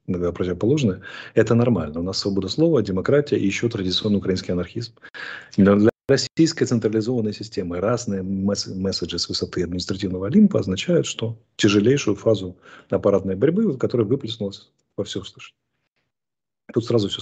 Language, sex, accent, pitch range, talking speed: Russian, male, native, 95-130 Hz, 130 wpm